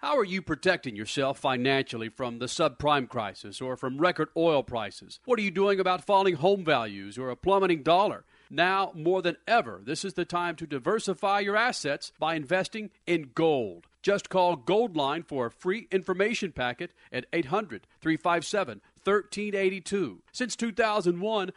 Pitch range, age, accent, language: 155-205 Hz, 50-69, American, English